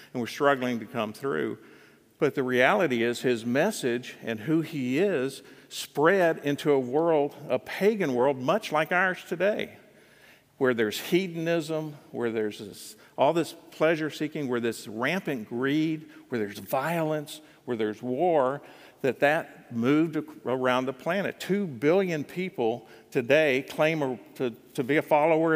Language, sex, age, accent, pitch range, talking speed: English, male, 50-69, American, 120-155 Hz, 145 wpm